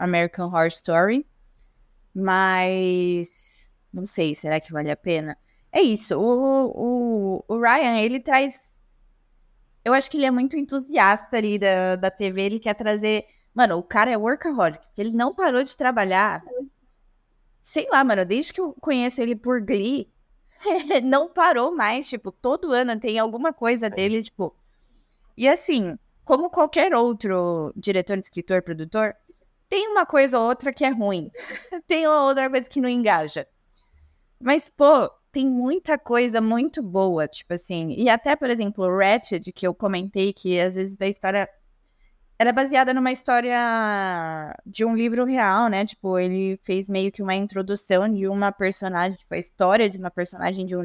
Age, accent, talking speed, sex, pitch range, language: 20-39, Brazilian, 160 wpm, female, 190-255 Hz, Portuguese